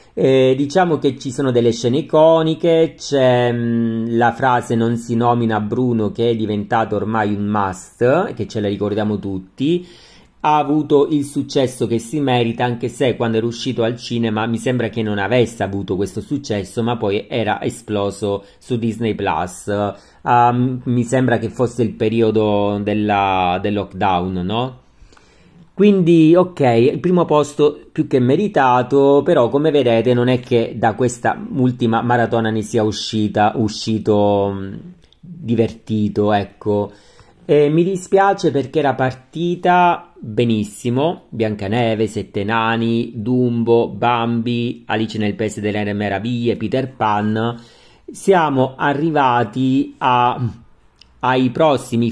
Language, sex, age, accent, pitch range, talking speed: Italian, male, 40-59, native, 110-135 Hz, 130 wpm